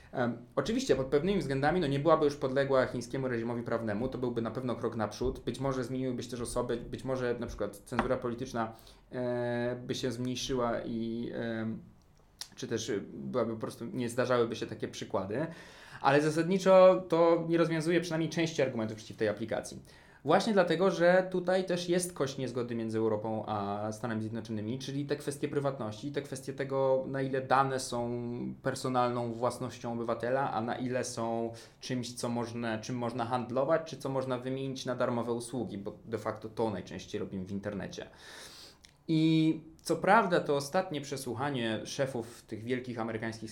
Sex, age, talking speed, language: male, 20-39, 165 wpm, Polish